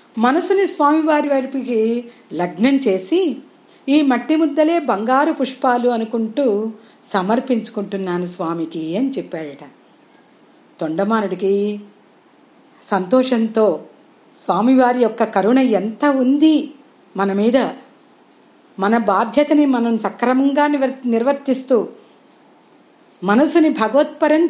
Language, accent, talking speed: Telugu, native, 80 wpm